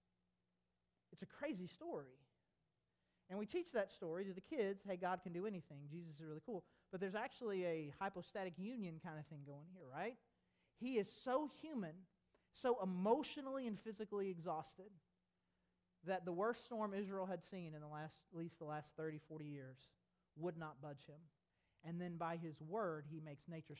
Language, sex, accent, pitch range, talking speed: English, male, American, 155-210 Hz, 180 wpm